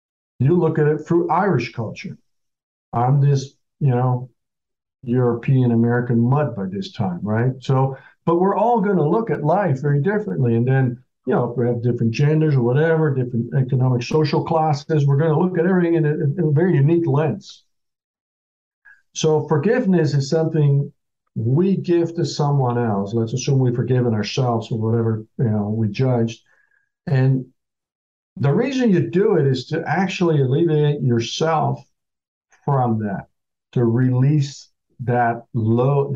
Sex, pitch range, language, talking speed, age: male, 120-160 Hz, English, 155 wpm, 50-69